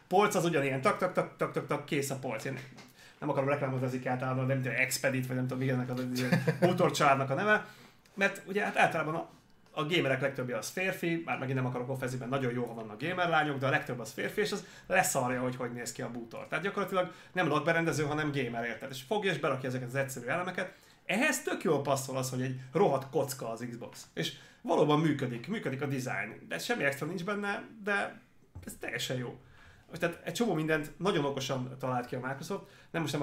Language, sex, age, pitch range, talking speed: Hungarian, male, 30-49, 130-165 Hz, 210 wpm